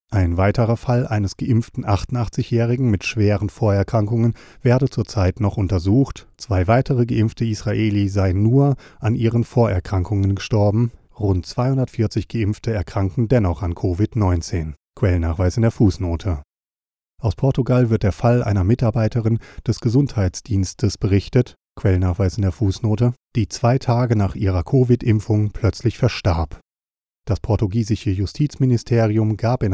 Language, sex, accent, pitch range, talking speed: German, male, German, 95-120 Hz, 125 wpm